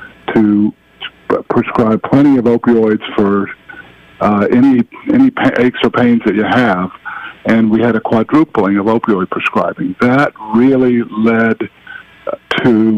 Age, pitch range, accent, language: 50-69, 110-135 Hz, American, English